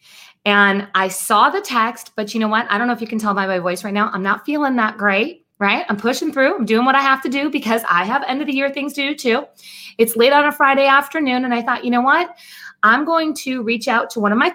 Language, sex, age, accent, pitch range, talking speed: English, female, 20-39, American, 210-300 Hz, 285 wpm